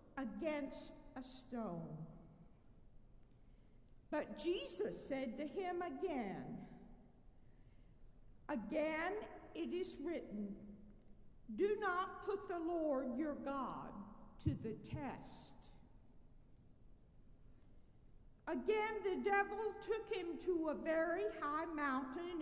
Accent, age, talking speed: American, 50-69, 90 wpm